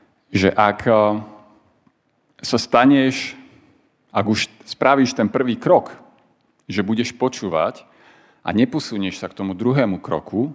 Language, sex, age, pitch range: Slovak, male, 40-59, 90-110 Hz